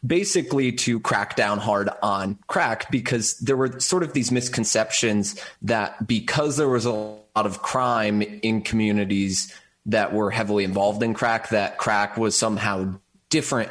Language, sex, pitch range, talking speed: English, male, 105-120 Hz, 155 wpm